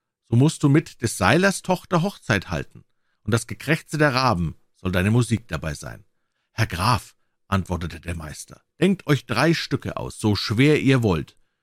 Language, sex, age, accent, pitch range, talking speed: German, male, 50-69, German, 95-140 Hz, 170 wpm